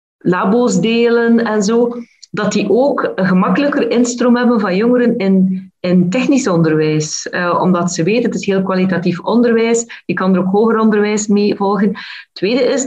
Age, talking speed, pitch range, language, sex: 40-59, 170 wpm, 180-235 Hz, Dutch, female